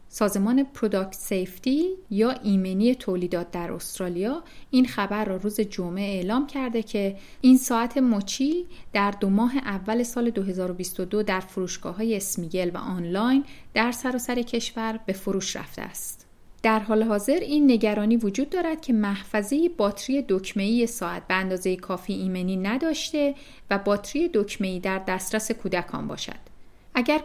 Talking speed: 140 wpm